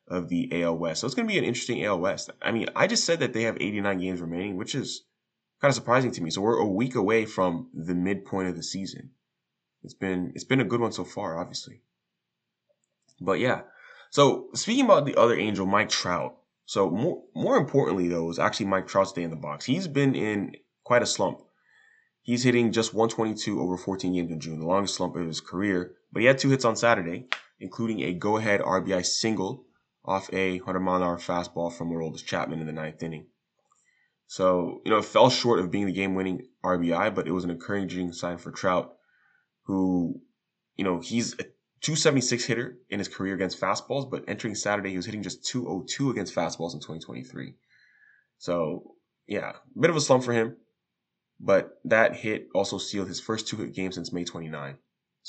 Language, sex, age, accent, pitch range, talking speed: English, male, 20-39, American, 85-115 Hz, 200 wpm